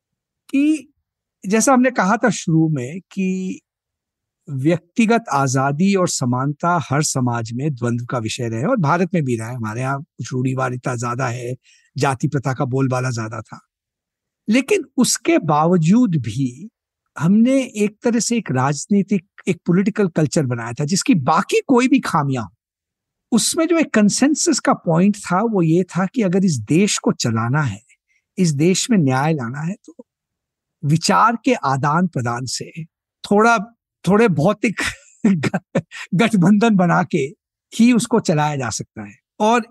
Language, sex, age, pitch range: Hindi, male, 50-69, 145-220 Hz